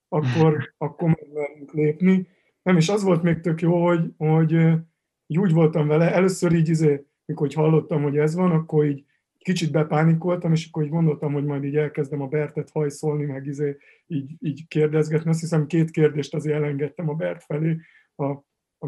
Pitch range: 150-165 Hz